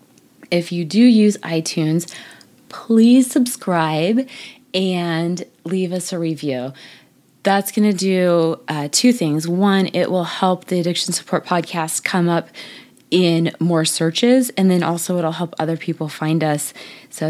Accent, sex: American, female